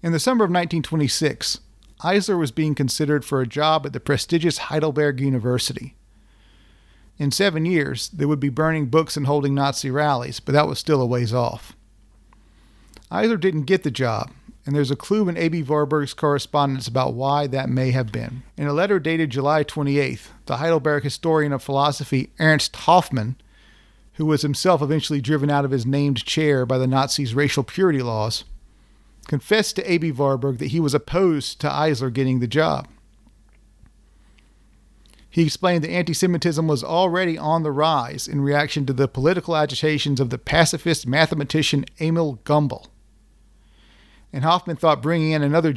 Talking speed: 165 wpm